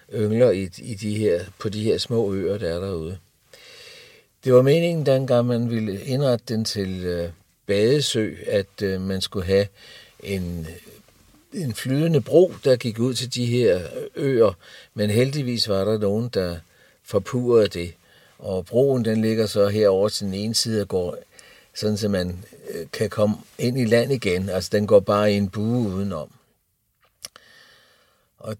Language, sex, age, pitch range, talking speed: Danish, male, 60-79, 100-130 Hz, 165 wpm